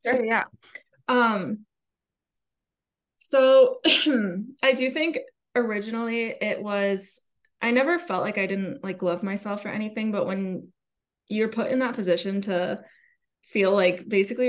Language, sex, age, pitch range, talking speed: English, female, 20-39, 185-225 Hz, 135 wpm